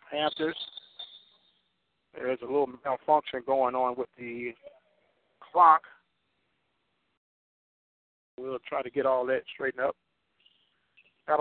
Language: English